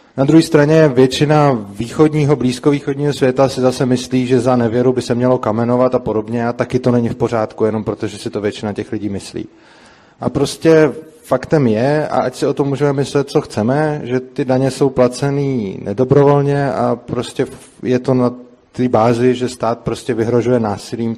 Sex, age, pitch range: male, 30-49, 120-140 Hz